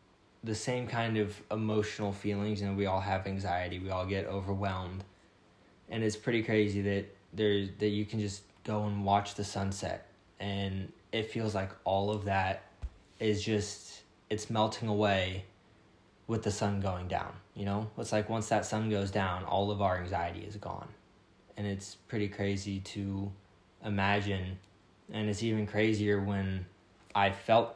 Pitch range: 95-105 Hz